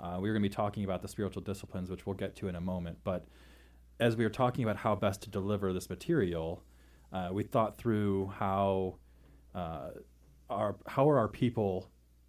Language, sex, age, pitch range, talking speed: English, male, 30-49, 85-100 Hz, 200 wpm